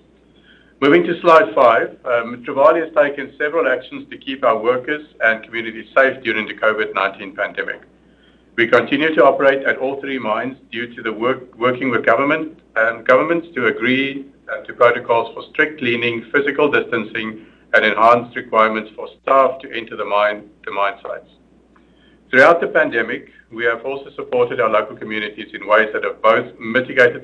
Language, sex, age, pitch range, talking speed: English, male, 60-79, 115-170 Hz, 165 wpm